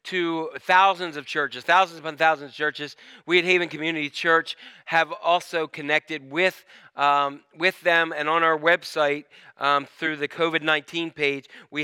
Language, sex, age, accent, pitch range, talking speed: English, male, 40-59, American, 155-185 Hz, 155 wpm